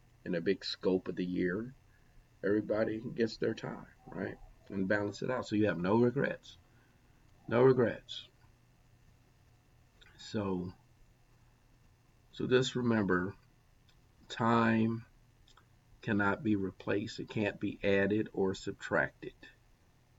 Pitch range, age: 95-120 Hz, 50-69